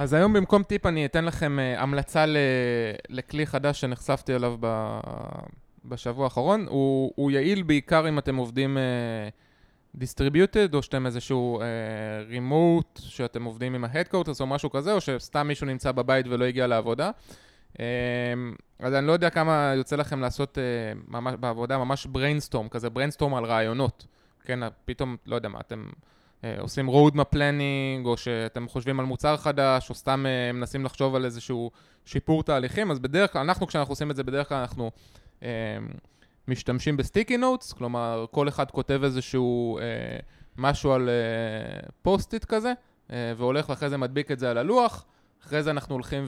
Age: 20-39